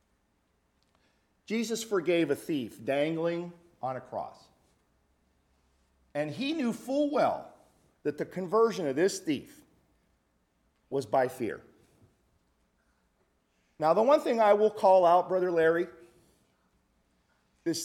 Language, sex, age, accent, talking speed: English, male, 50-69, American, 110 wpm